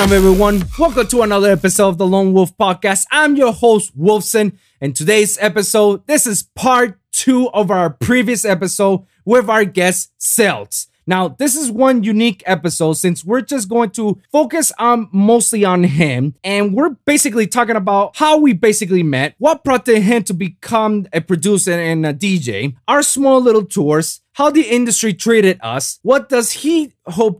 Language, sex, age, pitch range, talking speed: English, male, 20-39, 170-225 Hz, 170 wpm